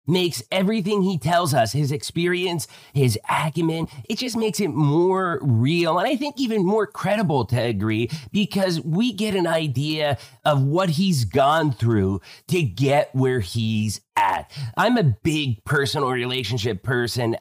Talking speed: 150 wpm